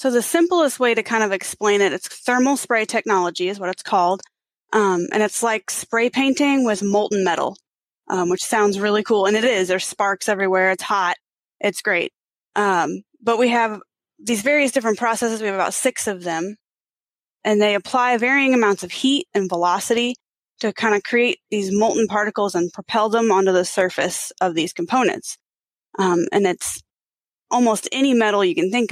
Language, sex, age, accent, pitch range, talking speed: English, female, 20-39, American, 185-230 Hz, 185 wpm